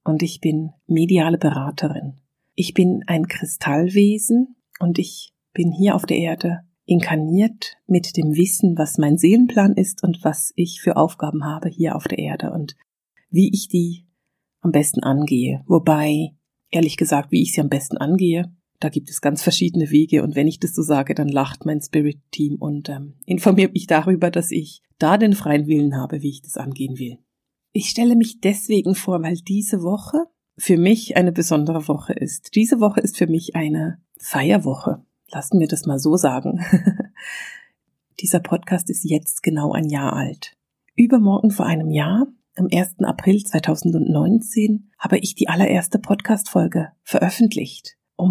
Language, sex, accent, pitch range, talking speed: German, female, German, 155-195 Hz, 165 wpm